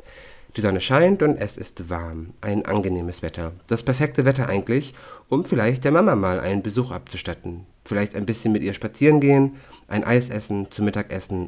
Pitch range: 95-115 Hz